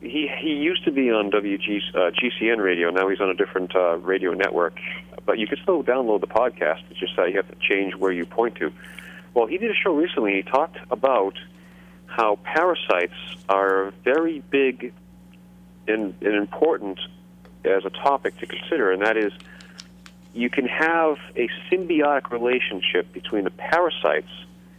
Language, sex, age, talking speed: English, male, 40-59, 170 wpm